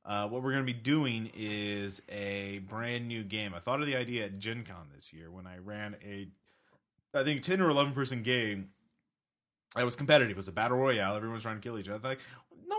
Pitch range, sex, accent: 100-125 Hz, male, American